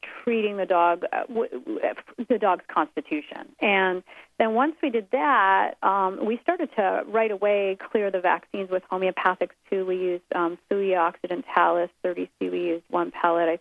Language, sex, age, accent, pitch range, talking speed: English, female, 40-59, American, 180-210 Hz, 155 wpm